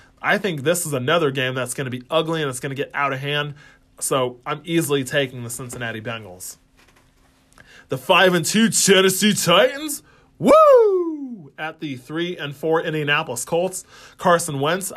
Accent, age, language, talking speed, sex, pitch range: American, 20-39, English, 170 wpm, male, 135-170 Hz